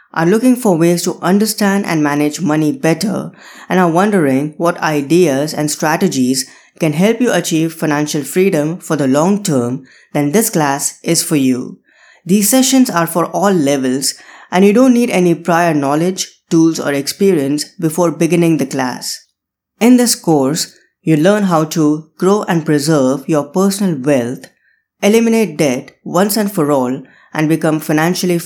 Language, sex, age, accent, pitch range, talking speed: English, female, 20-39, Indian, 150-195 Hz, 160 wpm